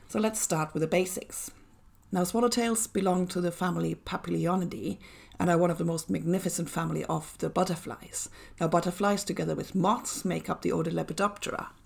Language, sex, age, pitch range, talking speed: English, female, 30-49, 170-200 Hz, 170 wpm